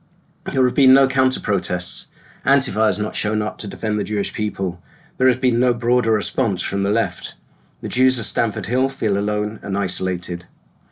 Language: English